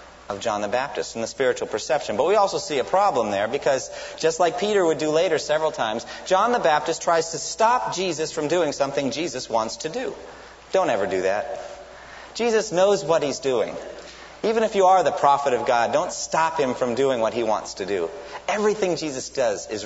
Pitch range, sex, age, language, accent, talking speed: 120-185 Hz, male, 30-49, English, American, 210 wpm